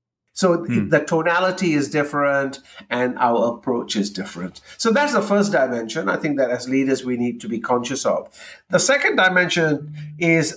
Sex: male